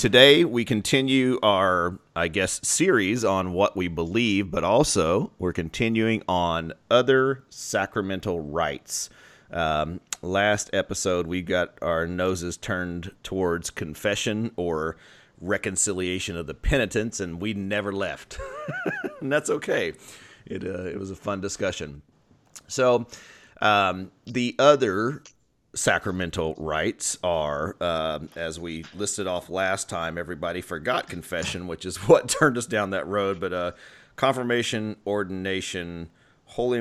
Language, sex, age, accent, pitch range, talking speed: English, male, 30-49, American, 85-105 Hz, 125 wpm